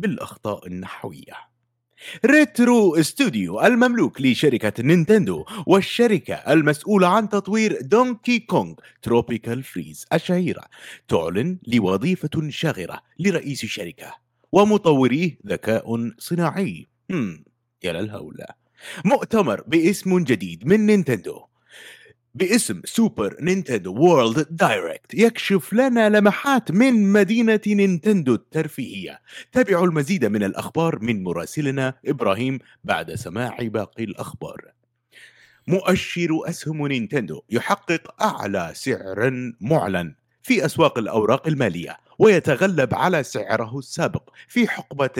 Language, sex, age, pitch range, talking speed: Arabic, male, 30-49, 120-200 Hz, 95 wpm